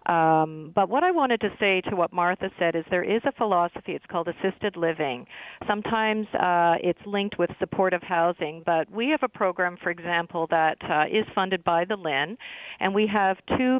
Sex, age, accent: female, 40-59, American